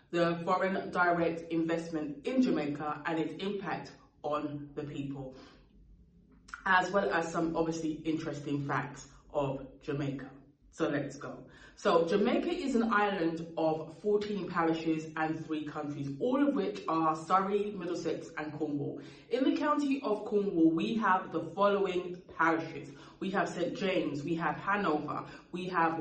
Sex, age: female, 20-39